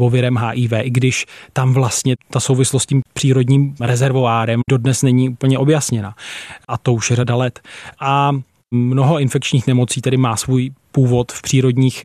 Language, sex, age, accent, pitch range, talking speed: Czech, male, 20-39, native, 125-135 Hz, 155 wpm